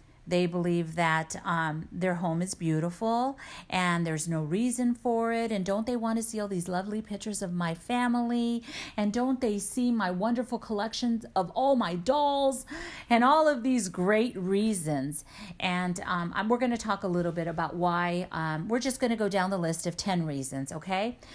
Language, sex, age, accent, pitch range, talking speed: English, female, 40-59, American, 170-240 Hz, 190 wpm